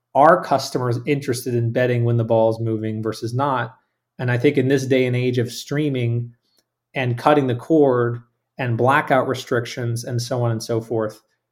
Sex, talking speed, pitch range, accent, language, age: male, 180 wpm, 120-140 Hz, American, English, 30-49